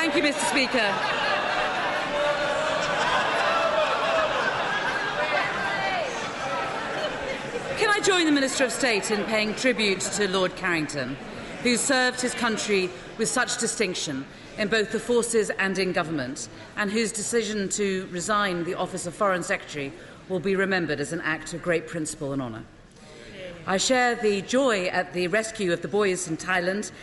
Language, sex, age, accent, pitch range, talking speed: English, female, 40-59, British, 155-225 Hz, 140 wpm